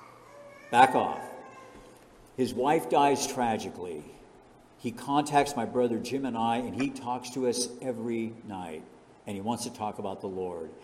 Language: English